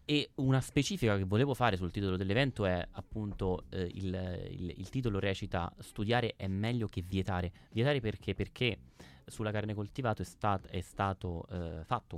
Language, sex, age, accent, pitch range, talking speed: Italian, male, 30-49, native, 90-110 Hz, 165 wpm